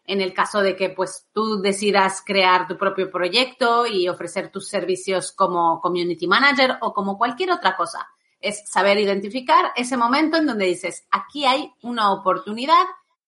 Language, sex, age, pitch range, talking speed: Spanish, female, 30-49, 185-245 Hz, 165 wpm